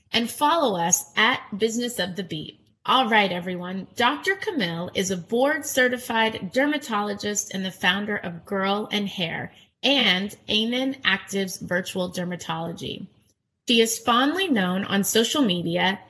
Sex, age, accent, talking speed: female, 30-49, American, 135 wpm